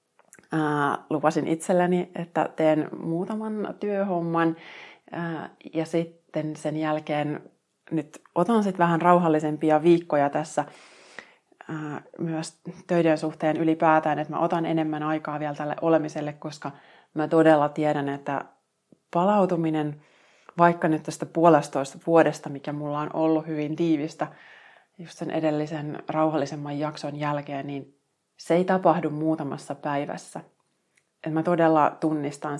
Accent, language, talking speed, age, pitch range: native, Finnish, 110 wpm, 30-49, 150-170 Hz